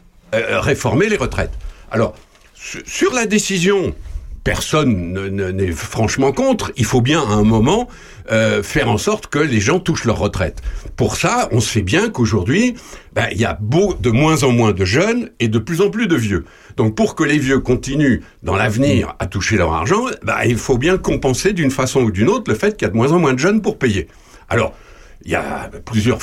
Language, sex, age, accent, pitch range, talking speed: French, male, 60-79, French, 110-180 Hz, 200 wpm